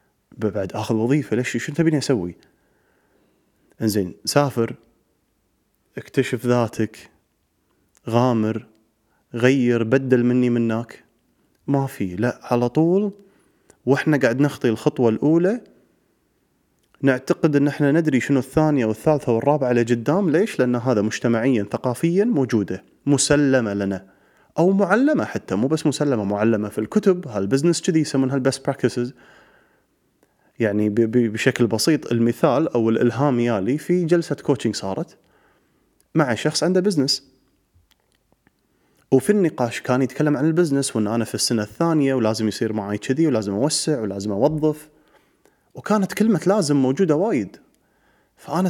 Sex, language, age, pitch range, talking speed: male, Arabic, 30-49, 115-155 Hz, 120 wpm